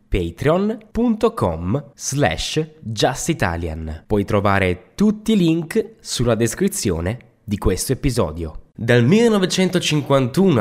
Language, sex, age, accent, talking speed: Italian, male, 20-39, native, 85 wpm